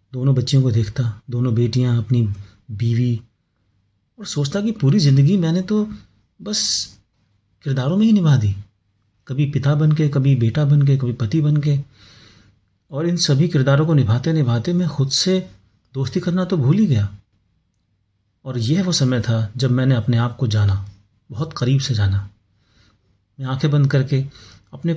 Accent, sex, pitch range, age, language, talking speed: native, male, 105-145 Hz, 30-49, Hindi, 160 wpm